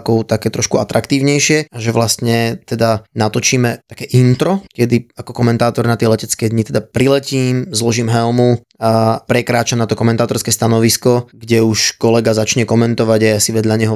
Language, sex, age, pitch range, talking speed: Slovak, male, 20-39, 115-140 Hz, 155 wpm